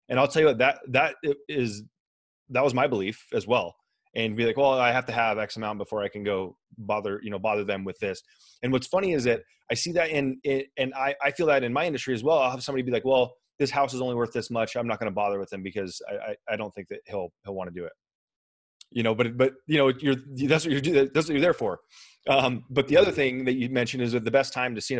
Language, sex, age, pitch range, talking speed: English, male, 30-49, 115-140 Hz, 280 wpm